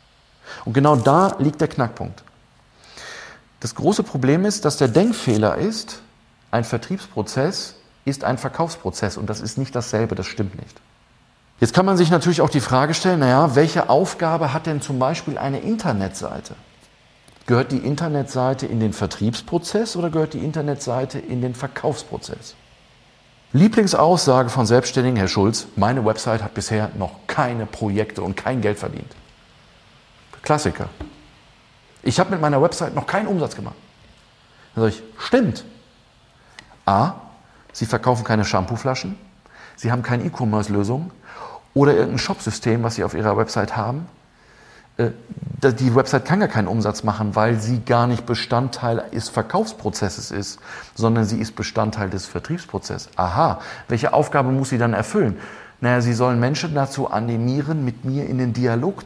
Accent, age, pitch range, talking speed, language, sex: German, 40-59, 110-150 Hz, 145 wpm, German, male